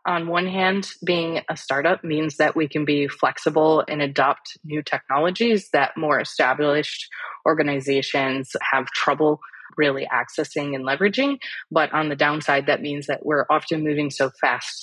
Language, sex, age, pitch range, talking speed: English, female, 20-39, 135-160 Hz, 155 wpm